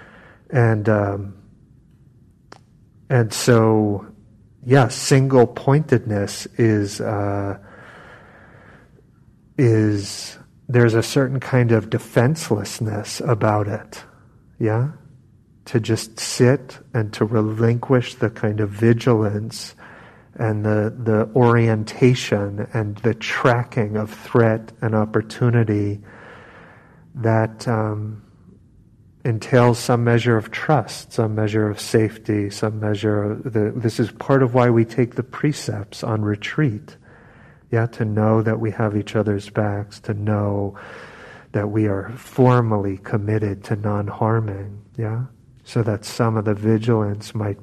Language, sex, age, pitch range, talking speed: English, male, 40-59, 105-120 Hz, 115 wpm